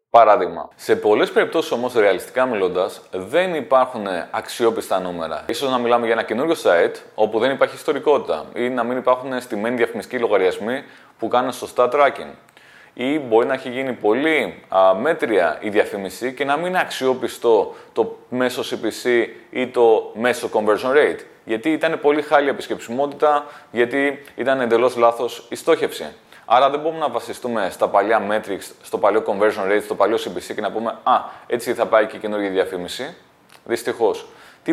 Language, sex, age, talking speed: Greek, male, 20-39, 160 wpm